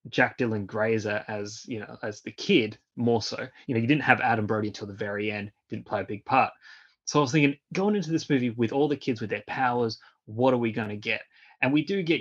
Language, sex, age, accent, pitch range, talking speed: English, male, 20-39, Australian, 105-125 Hz, 255 wpm